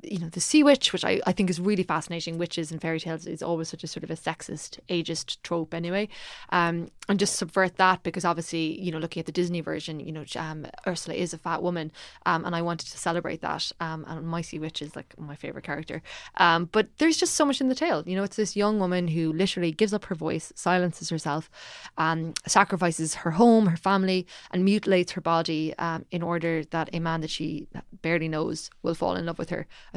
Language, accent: English, Irish